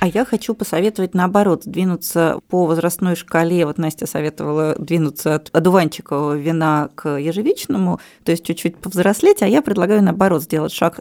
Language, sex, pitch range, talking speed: Russian, female, 170-230 Hz, 155 wpm